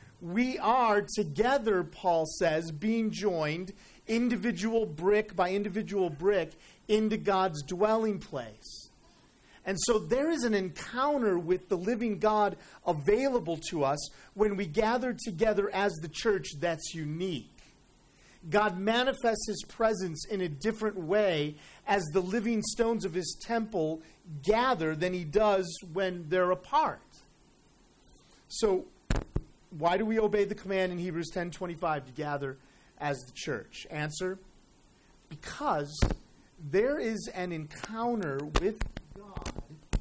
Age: 40-59